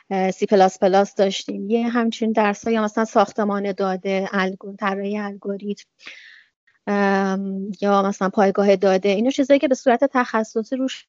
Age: 30-49